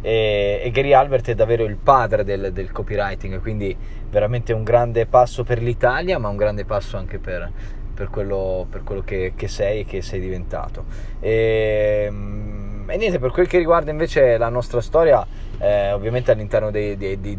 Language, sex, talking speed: Italian, male, 165 wpm